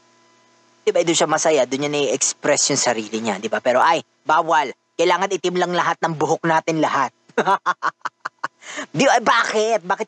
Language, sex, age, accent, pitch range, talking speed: Filipino, female, 20-39, native, 140-180 Hz, 160 wpm